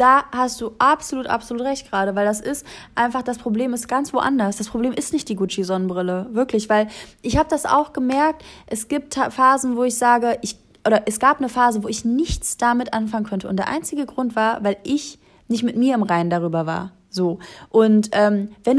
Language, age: German, 20-39